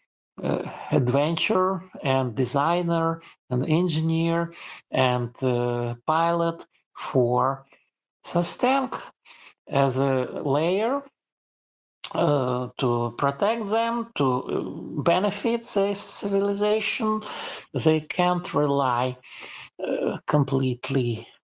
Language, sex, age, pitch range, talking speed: English, male, 50-69, 125-190 Hz, 80 wpm